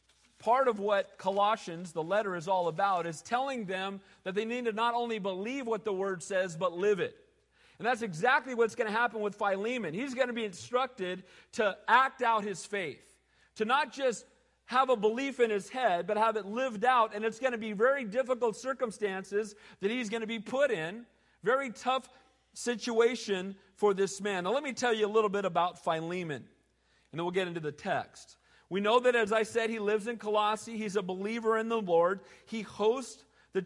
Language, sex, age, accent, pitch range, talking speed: English, male, 40-59, American, 185-230 Hz, 205 wpm